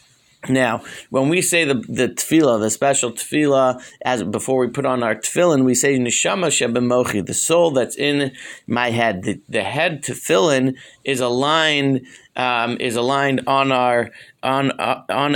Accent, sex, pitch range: American, male, 125-155 Hz